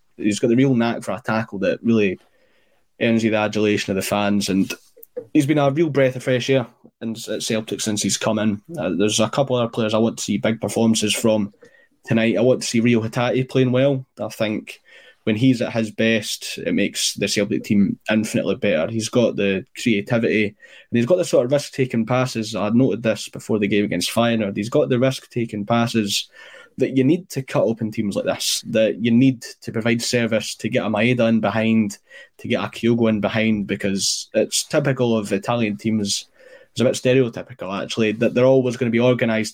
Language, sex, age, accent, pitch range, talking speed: English, male, 20-39, British, 110-125 Hz, 210 wpm